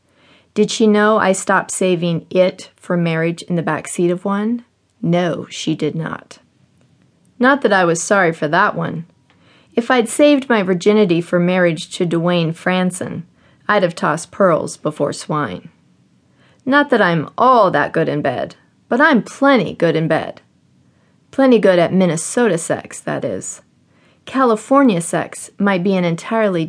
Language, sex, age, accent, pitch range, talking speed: English, female, 40-59, American, 160-210 Hz, 155 wpm